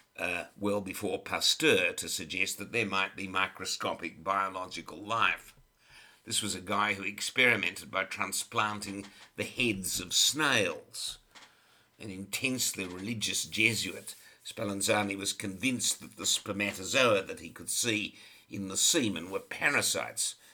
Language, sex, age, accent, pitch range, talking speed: English, male, 60-79, British, 95-105 Hz, 130 wpm